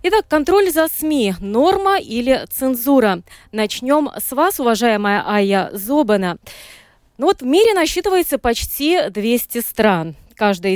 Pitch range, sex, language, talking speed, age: 200-295 Hz, female, Russian, 110 wpm, 20-39